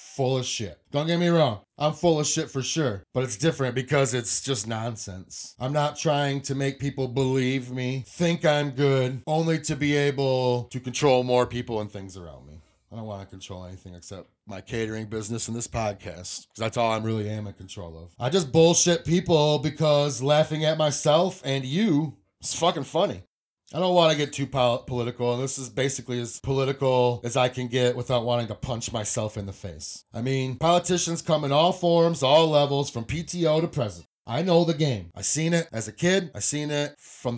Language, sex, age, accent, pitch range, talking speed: English, male, 30-49, American, 120-150 Hz, 210 wpm